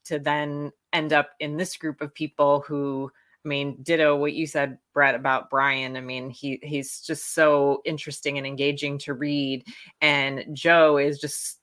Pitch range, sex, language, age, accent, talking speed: 145-185 Hz, female, English, 20-39, American, 175 wpm